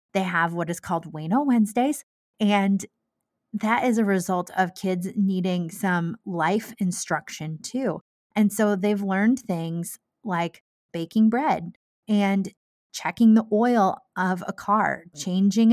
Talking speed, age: 135 wpm, 30-49